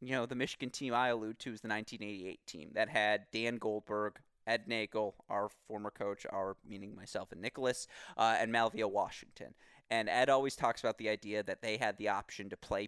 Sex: male